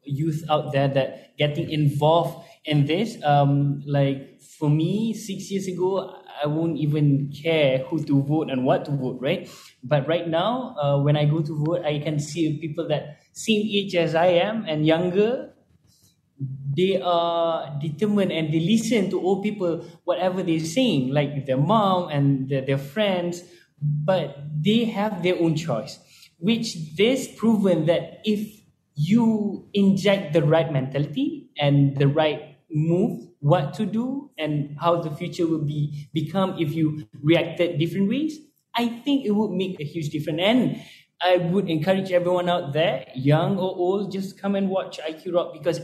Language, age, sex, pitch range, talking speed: English, 20-39, male, 150-185 Hz, 165 wpm